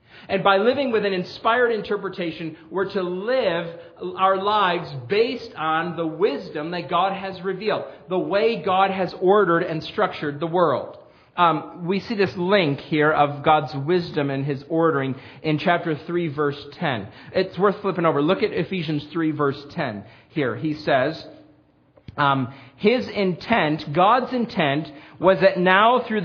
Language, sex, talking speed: English, male, 155 wpm